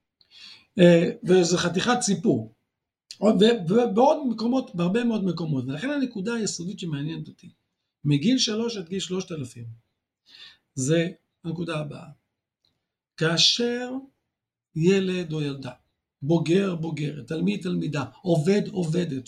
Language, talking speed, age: Hebrew, 100 wpm, 50-69